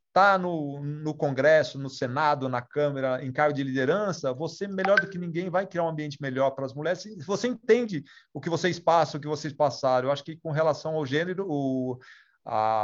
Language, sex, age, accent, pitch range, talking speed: Portuguese, male, 40-59, Brazilian, 130-170 Hz, 200 wpm